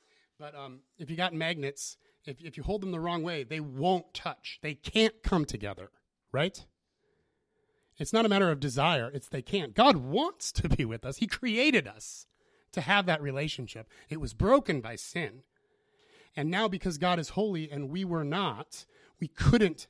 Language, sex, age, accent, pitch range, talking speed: English, male, 30-49, American, 130-185 Hz, 185 wpm